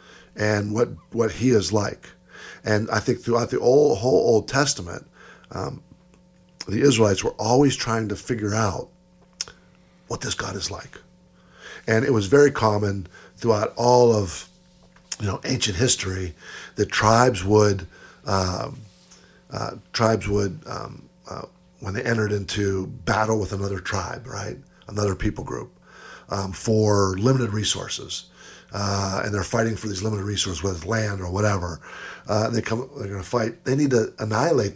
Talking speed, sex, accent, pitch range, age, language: 155 wpm, male, American, 100-125 Hz, 50-69, English